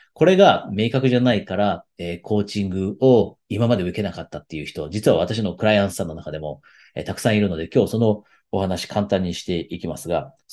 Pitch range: 90-125 Hz